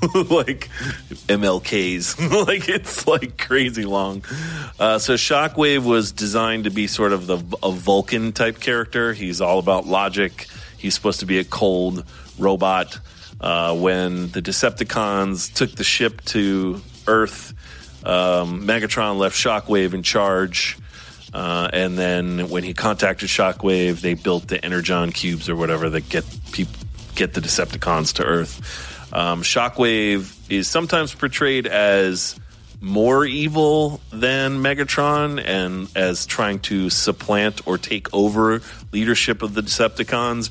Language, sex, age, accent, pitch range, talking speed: English, male, 30-49, American, 90-110 Hz, 135 wpm